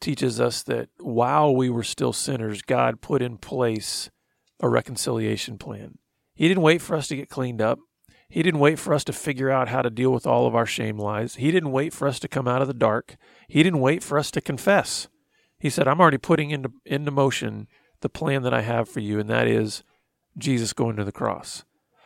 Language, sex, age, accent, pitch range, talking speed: English, male, 40-59, American, 115-145 Hz, 225 wpm